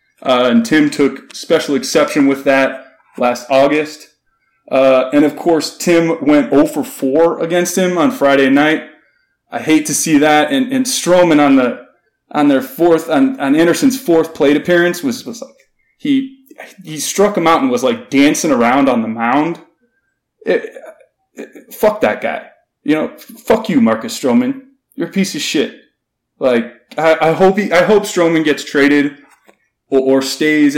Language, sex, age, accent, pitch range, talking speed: English, male, 20-39, American, 135-215 Hz, 170 wpm